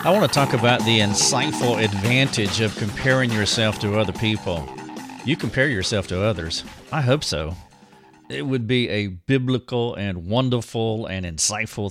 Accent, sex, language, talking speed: American, male, English, 155 wpm